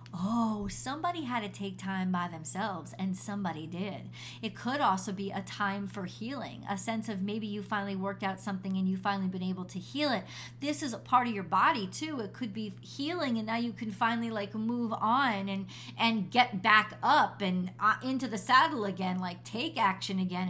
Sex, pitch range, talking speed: female, 190-245 Hz, 205 wpm